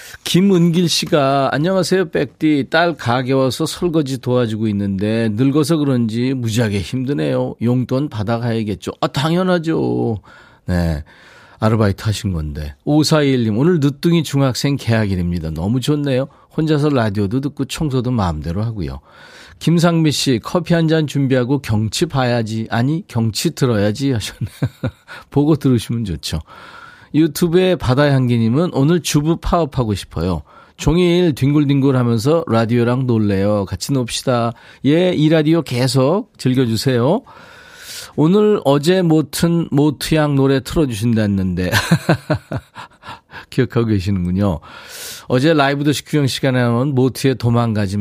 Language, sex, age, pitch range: Korean, male, 40-59, 110-155 Hz